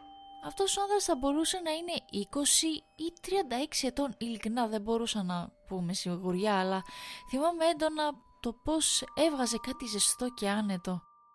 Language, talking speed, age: Greek, 140 wpm, 20-39